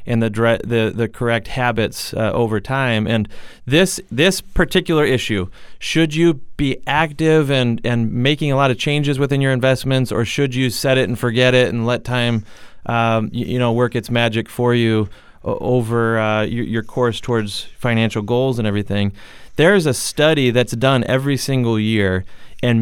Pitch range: 110-130 Hz